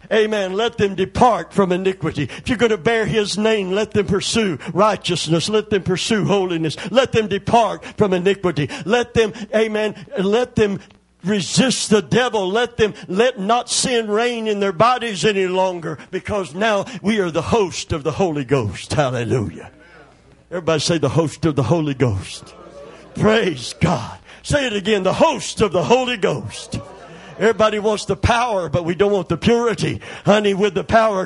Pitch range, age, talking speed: 125-210 Hz, 50-69, 170 wpm